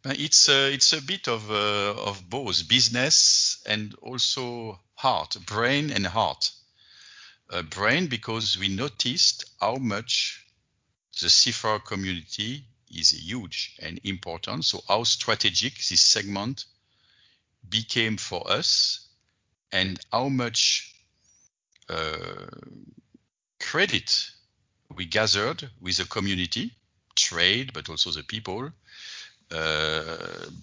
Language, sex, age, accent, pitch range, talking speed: English, male, 50-69, French, 95-115 Hz, 105 wpm